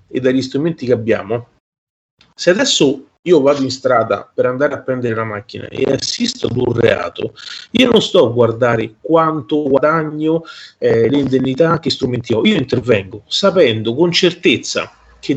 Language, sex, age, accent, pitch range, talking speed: Italian, male, 30-49, native, 130-195 Hz, 155 wpm